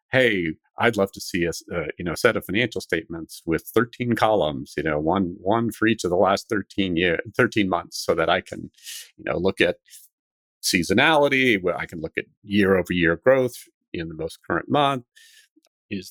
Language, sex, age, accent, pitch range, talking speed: English, male, 50-69, American, 95-125 Hz, 190 wpm